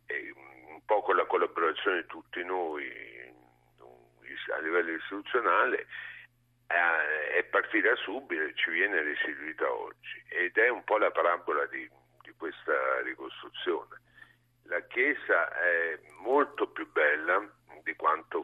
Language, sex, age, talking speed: Italian, male, 50-69, 120 wpm